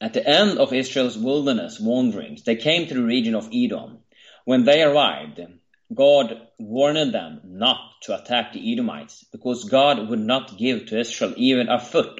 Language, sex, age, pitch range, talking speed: English, male, 30-49, 115-150 Hz, 170 wpm